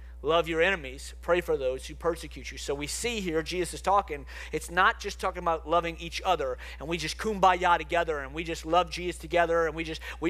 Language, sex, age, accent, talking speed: English, male, 40-59, American, 225 wpm